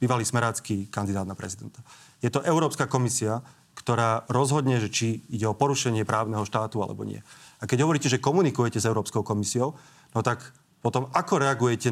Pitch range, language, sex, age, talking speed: 120-150 Hz, Slovak, male, 30-49, 165 wpm